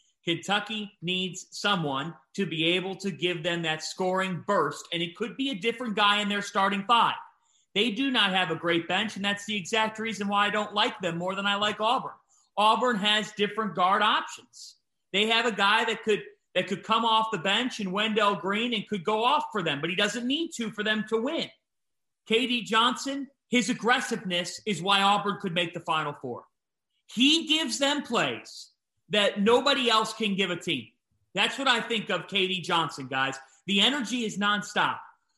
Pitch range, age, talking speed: 185-235 Hz, 40-59, 195 wpm